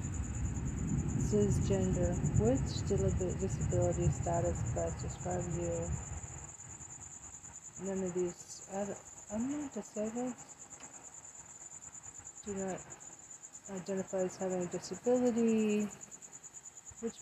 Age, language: 40-59, English